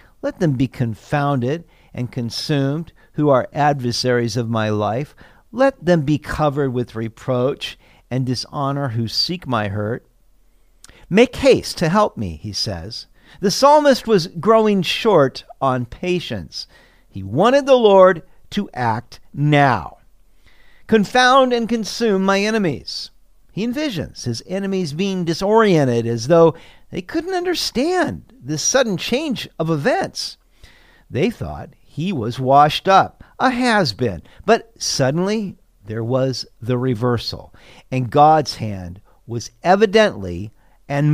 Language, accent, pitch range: English, American, 120-200 Hz